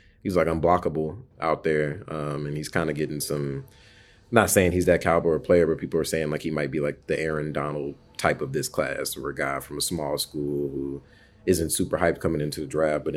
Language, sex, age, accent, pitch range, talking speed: English, male, 30-49, American, 75-90 Hz, 230 wpm